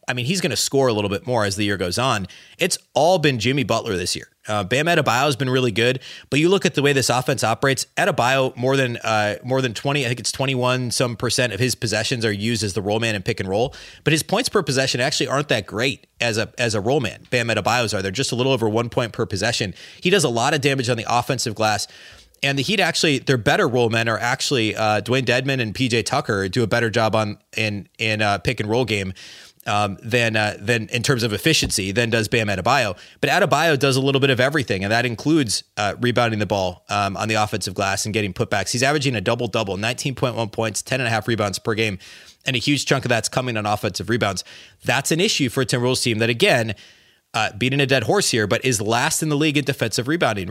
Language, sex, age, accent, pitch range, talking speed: English, male, 30-49, American, 110-135 Hz, 250 wpm